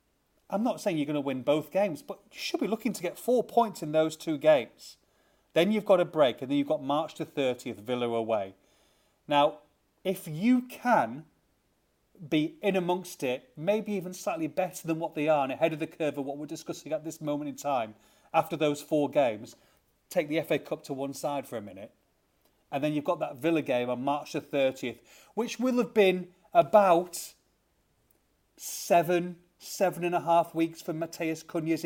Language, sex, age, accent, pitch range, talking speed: English, male, 30-49, British, 145-180 Hz, 200 wpm